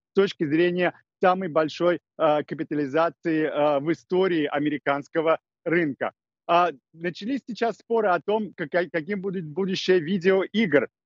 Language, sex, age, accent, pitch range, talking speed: Russian, male, 40-59, native, 160-190 Hz, 105 wpm